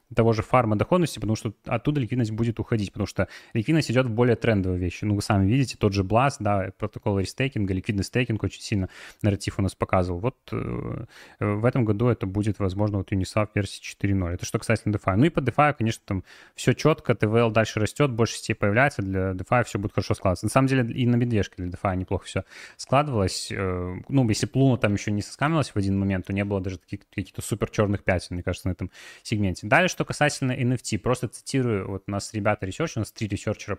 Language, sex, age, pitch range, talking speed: Russian, male, 20-39, 100-125 Hz, 220 wpm